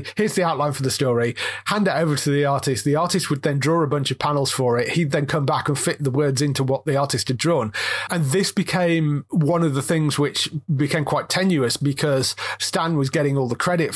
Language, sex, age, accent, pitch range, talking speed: English, male, 30-49, British, 135-175 Hz, 235 wpm